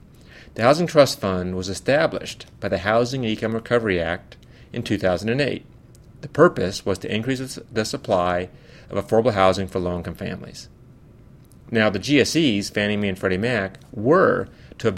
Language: English